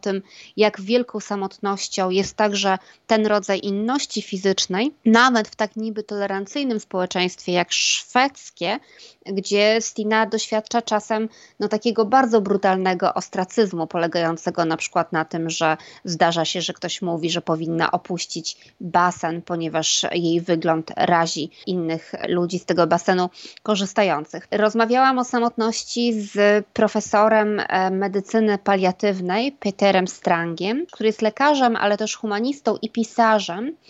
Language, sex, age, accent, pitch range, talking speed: Polish, female, 20-39, native, 190-230 Hz, 120 wpm